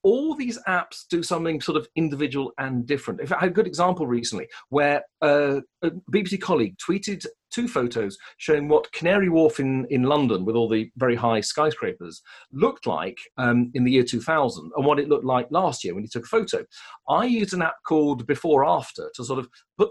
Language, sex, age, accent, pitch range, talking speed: English, male, 40-59, British, 140-185 Hz, 200 wpm